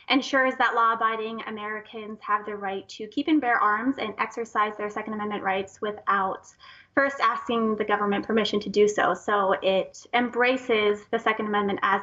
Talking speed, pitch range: 170 wpm, 205-240 Hz